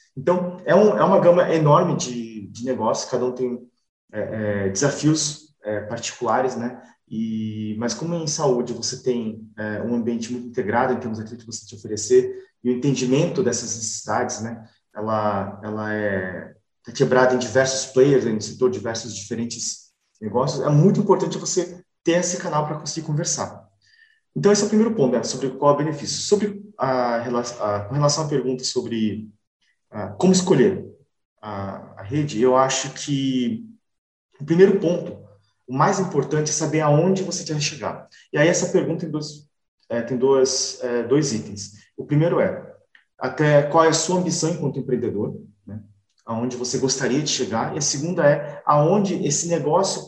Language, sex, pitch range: Portuguese, male, 115-165 Hz